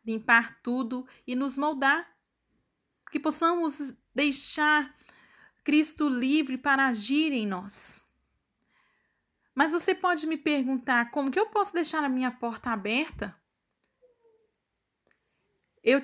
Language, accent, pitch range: Portuguese, Brazilian, 225-300 Hz